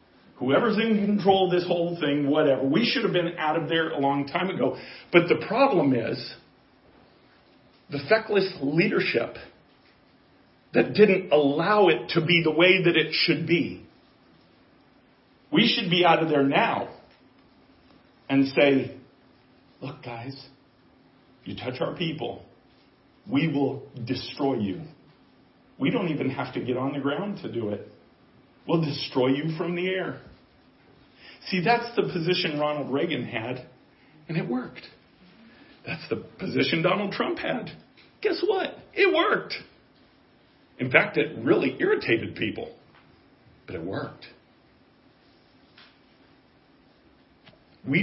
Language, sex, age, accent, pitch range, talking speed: English, male, 40-59, American, 135-180 Hz, 130 wpm